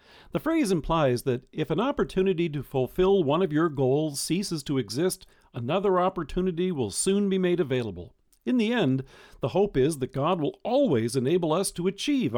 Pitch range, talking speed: 130-200 Hz, 180 wpm